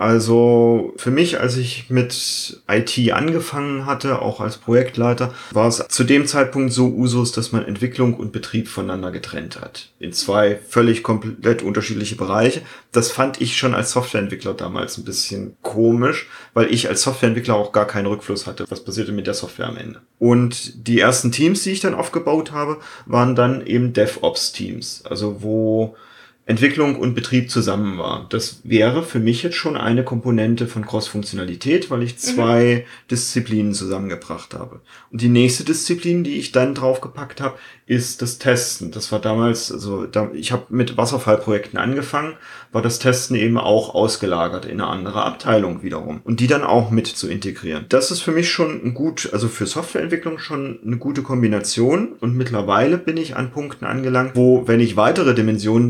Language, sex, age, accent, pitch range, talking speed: German, male, 30-49, German, 110-130 Hz, 170 wpm